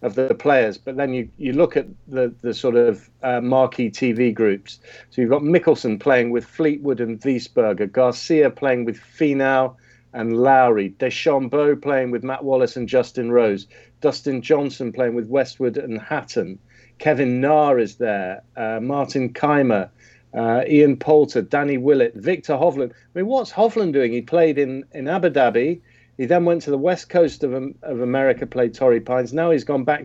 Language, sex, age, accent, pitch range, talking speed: English, male, 50-69, British, 120-145 Hz, 180 wpm